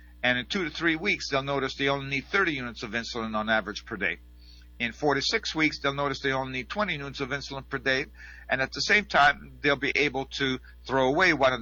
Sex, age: male, 50-69